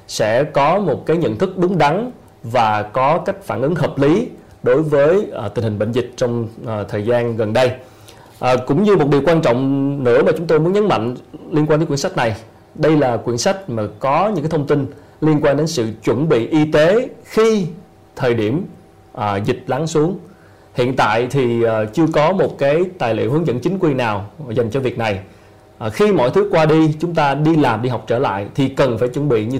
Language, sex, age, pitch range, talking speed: Vietnamese, male, 20-39, 115-155 Hz, 225 wpm